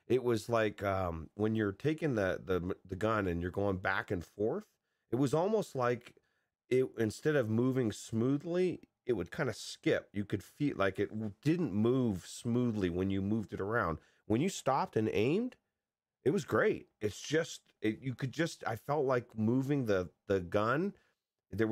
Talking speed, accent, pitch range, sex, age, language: 180 wpm, American, 85-110 Hz, male, 30-49, English